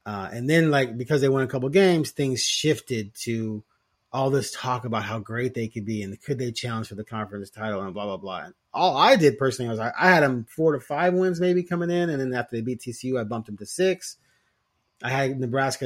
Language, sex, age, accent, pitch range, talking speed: English, male, 30-49, American, 120-150 Hz, 245 wpm